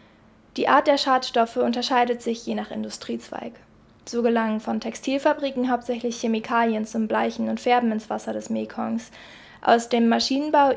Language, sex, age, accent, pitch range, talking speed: German, female, 20-39, German, 220-245 Hz, 145 wpm